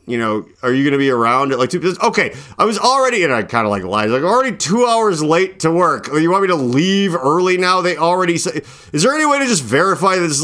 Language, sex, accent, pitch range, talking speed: English, male, American, 110-180 Hz, 265 wpm